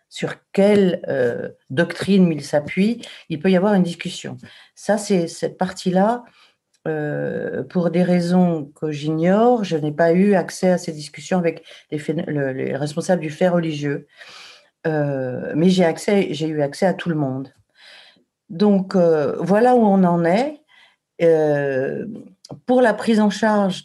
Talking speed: 160 wpm